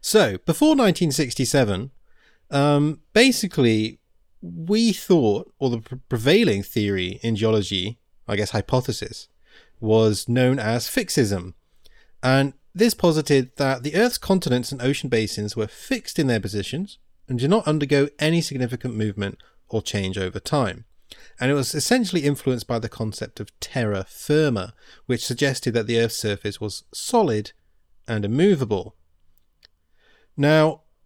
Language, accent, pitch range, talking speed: English, British, 105-150 Hz, 130 wpm